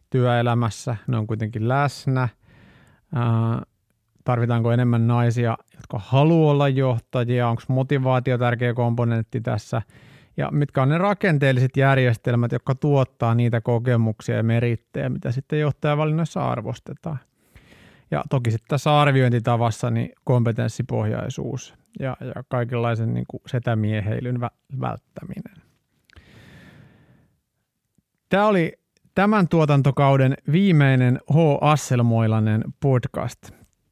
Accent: native